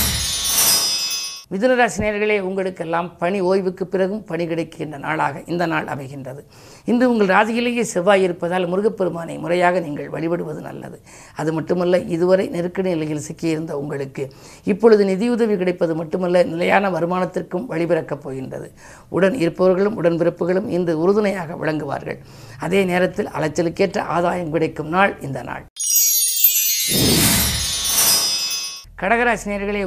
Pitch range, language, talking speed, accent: 160-195 Hz, Tamil, 100 wpm, native